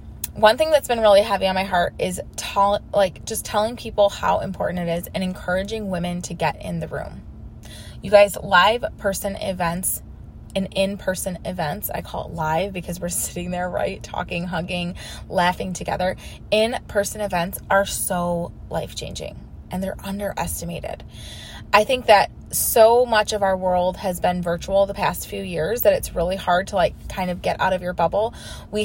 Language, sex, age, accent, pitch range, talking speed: English, female, 20-39, American, 180-210 Hz, 175 wpm